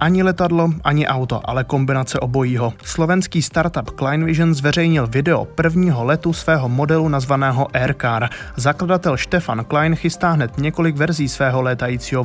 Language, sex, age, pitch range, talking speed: Czech, male, 20-39, 125-160 Hz, 135 wpm